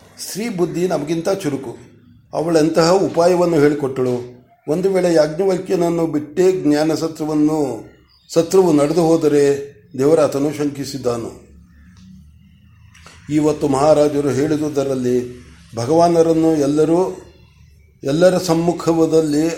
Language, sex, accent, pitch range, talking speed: Kannada, male, native, 145-170 Hz, 75 wpm